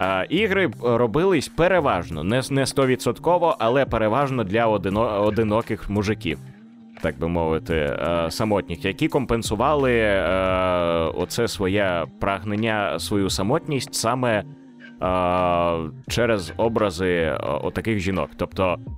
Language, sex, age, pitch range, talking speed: Ukrainian, male, 20-39, 100-130 Hz, 85 wpm